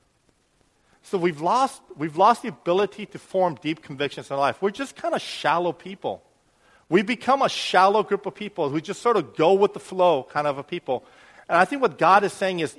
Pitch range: 165-240 Hz